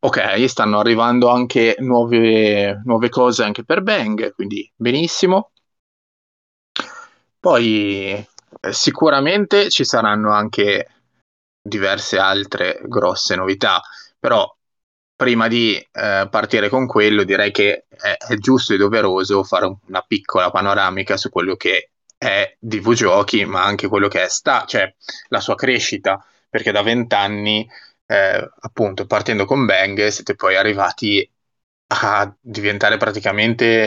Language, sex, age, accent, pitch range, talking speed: Italian, male, 20-39, native, 100-120 Hz, 120 wpm